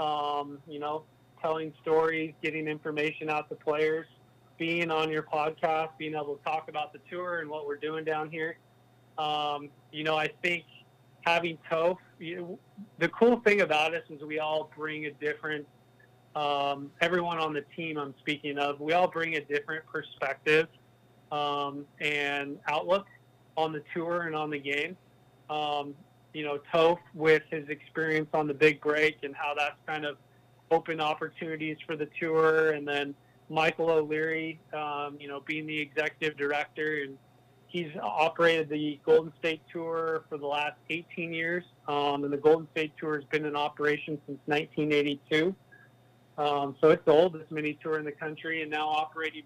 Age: 20-39